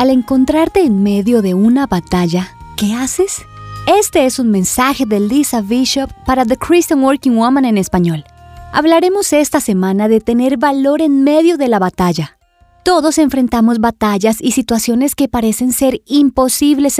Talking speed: 150 wpm